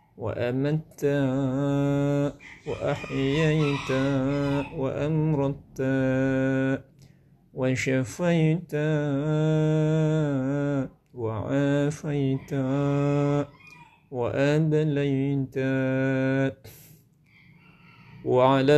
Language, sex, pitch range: Indonesian, male, 135-155 Hz